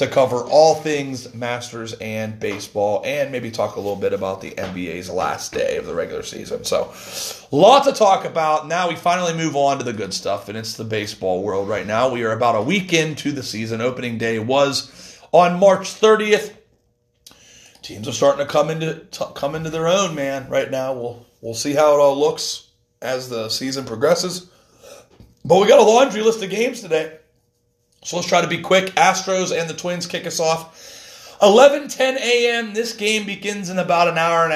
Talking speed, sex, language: 200 wpm, male, English